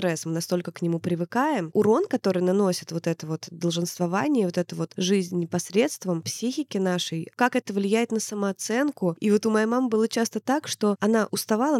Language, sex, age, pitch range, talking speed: Russian, female, 20-39, 180-220 Hz, 180 wpm